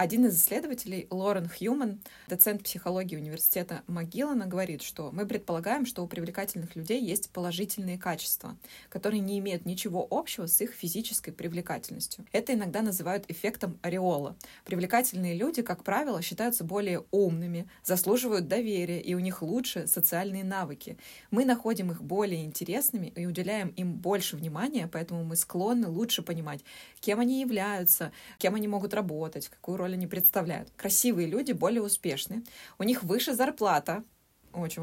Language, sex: Russian, female